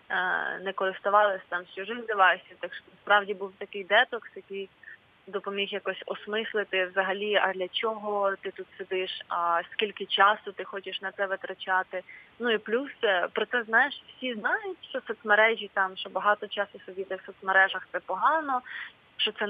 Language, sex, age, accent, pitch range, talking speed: Ukrainian, female, 20-39, native, 190-215 Hz, 155 wpm